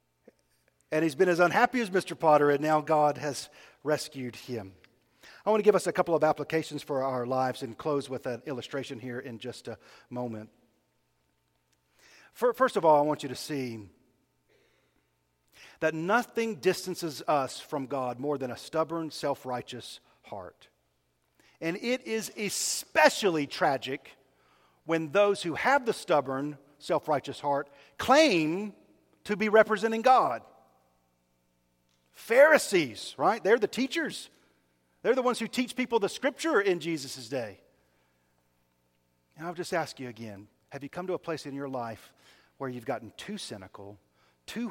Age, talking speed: 50-69, 150 wpm